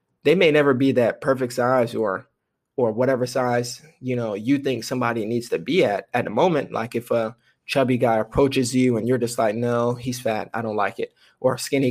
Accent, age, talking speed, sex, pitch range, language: American, 20-39, 220 wpm, male, 115-135 Hz, English